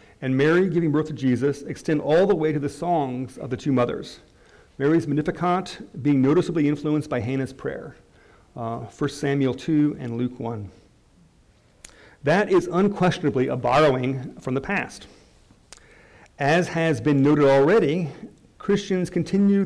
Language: English